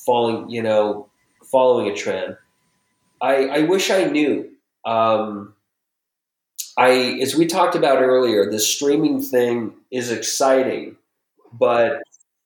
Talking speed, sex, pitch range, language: 115 wpm, male, 110-135 Hz, English